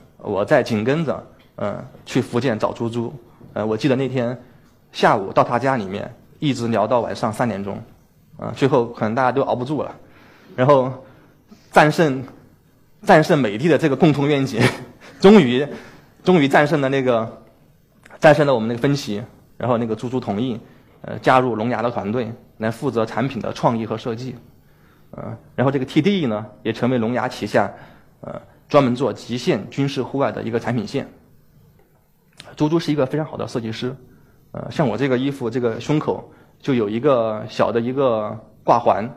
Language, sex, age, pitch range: Chinese, male, 20-39, 115-135 Hz